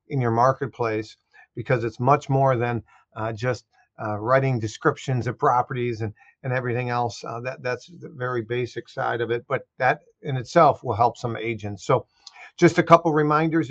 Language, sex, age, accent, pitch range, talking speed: English, male, 50-69, American, 120-145 Hz, 180 wpm